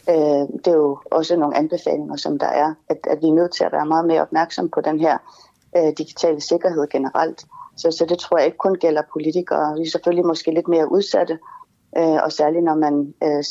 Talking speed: 220 wpm